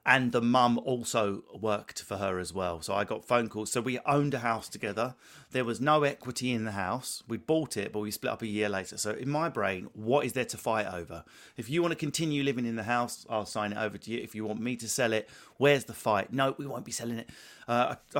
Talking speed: 260 wpm